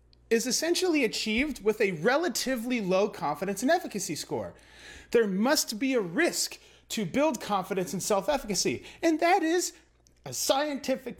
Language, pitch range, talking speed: English, 180-280 Hz, 140 wpm